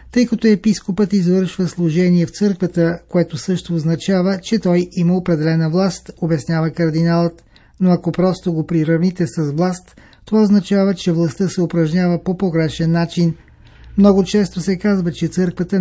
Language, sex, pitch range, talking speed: Bulgarian, male, 170-195 Hz, 150 wpm